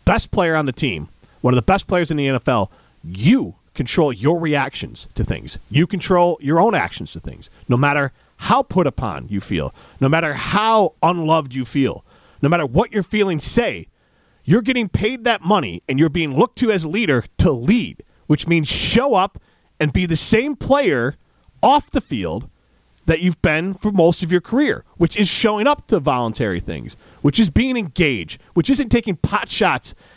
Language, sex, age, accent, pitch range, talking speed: English, male, 40-59, American, 135-210 Hz, 190 wpm